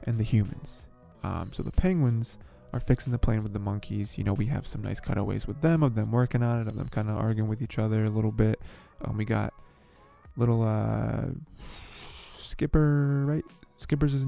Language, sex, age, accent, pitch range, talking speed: English, male, 20-39, American, 105-120 Hz, 200 wpm